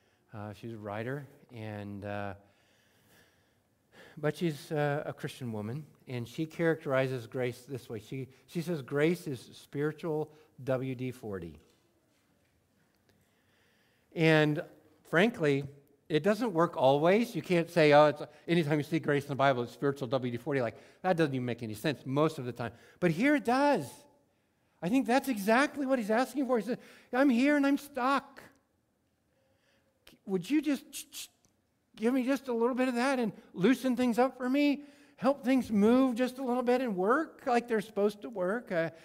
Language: English